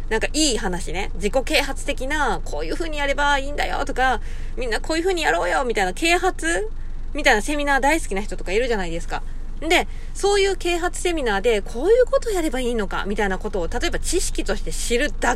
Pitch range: 220-370 Hz